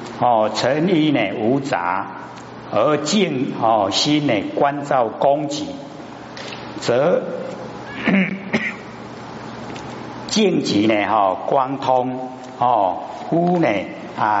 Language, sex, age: Chinese, male, 60-79